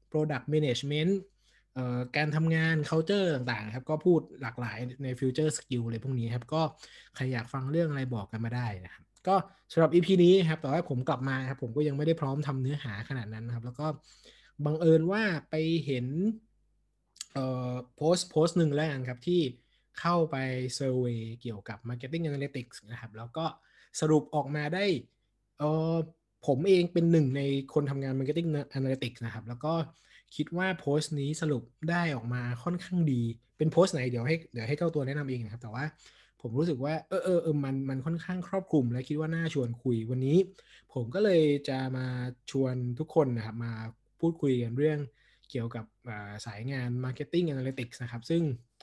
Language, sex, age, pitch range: Thai, male, 20-39, 125-160 Hz